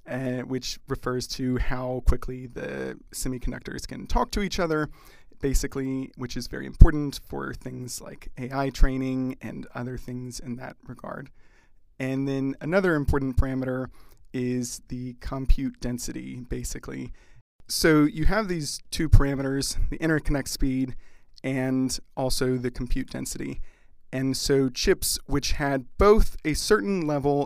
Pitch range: 125-140 Hz